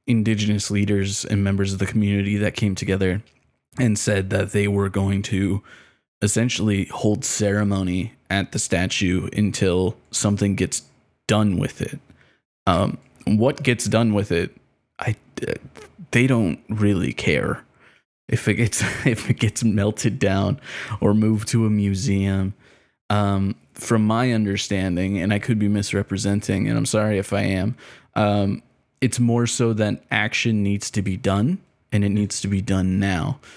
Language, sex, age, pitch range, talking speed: English, male, 20-39, 100-115 Hz, 150 wpm